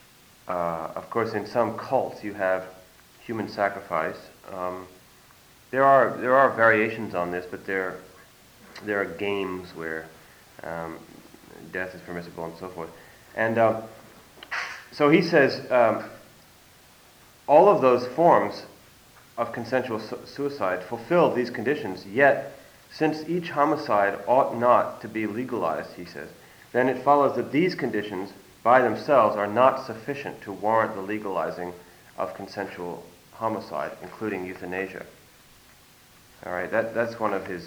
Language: English